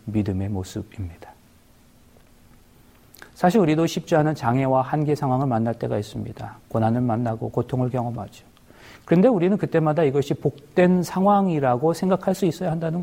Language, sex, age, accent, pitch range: Korean, male, 40-59, native, 125-175 Hz